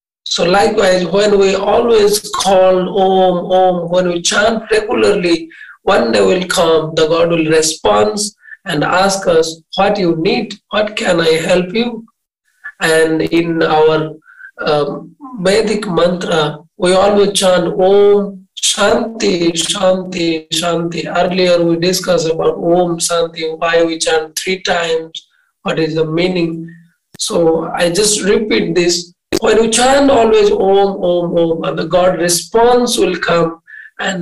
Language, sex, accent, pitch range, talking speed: English, male, Indian, 165-210 Hz, 135 wpm